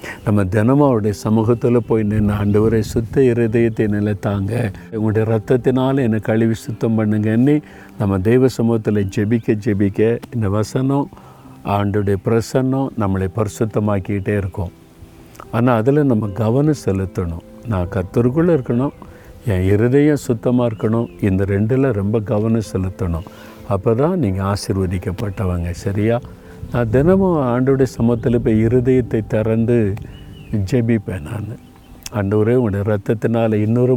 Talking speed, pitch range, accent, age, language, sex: 115 wpm, 100-120 Hz, native, 50-69, Tamil, male